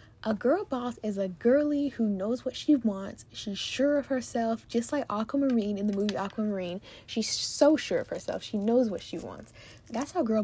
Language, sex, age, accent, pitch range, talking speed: English, female, 10-29, American, 200-240 Hz, 200 wpm